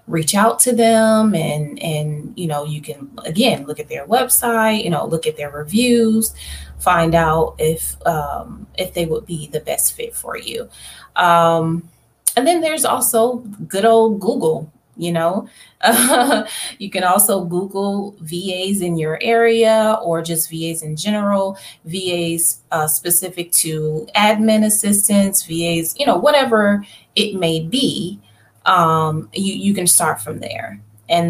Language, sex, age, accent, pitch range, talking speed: English, female, 20-39, American, 165-220 Hz, 150 wpm